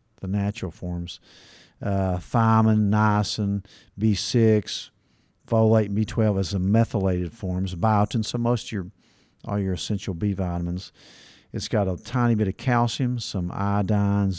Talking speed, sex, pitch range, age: 135 wpm, male, 95-110 Hz, 50-69